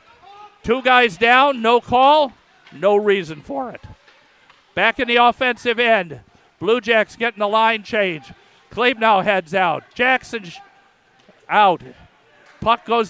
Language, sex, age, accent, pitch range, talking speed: English, male, 50-69, American, 200-245 Hz, 135 wpm